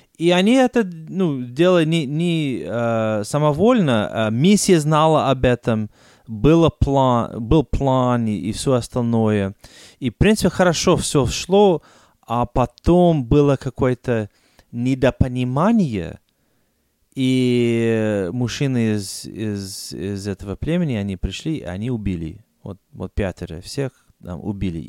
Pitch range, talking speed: 110-150 Hz, 125 wpm